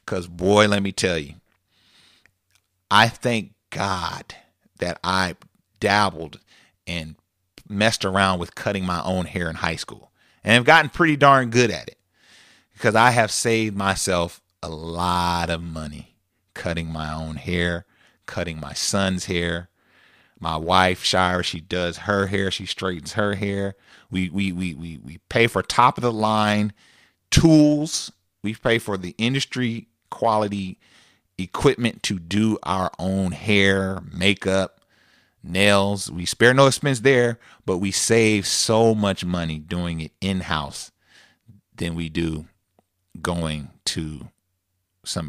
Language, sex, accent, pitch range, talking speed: English, male, American, 90-105 Hz, 140 wpm